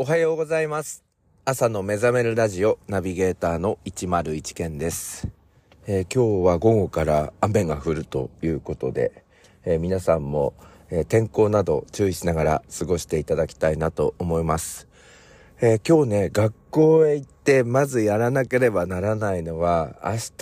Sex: male